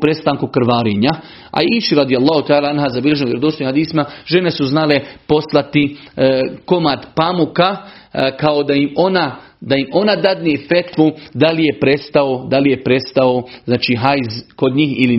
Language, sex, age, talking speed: Croatian, male, 40-59, 145 wpm